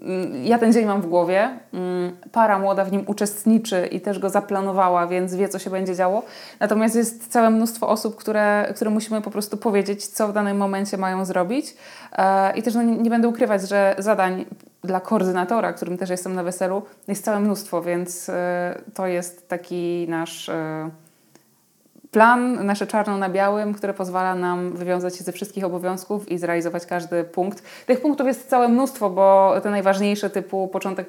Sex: female